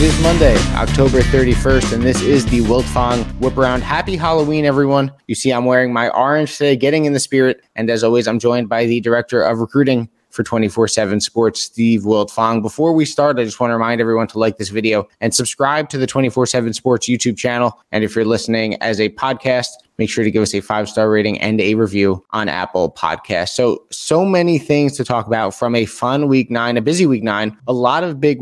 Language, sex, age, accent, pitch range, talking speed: English, male, 20-39, American, 115-145 Hz, 220 wpm